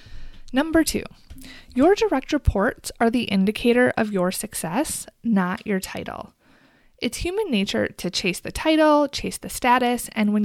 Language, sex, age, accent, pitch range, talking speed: English, female, 20-39, American, 195-255 Hz, 150 wpm